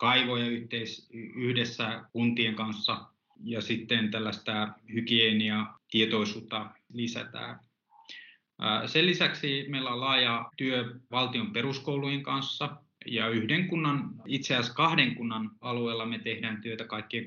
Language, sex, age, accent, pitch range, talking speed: Finnish, male, 20-39, native, 110-130 Hz, 110 wpm